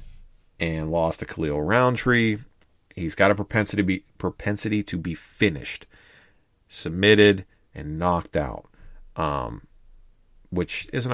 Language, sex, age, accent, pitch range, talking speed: English, male, 30-49, American, 80-100 Hz, 120 wpm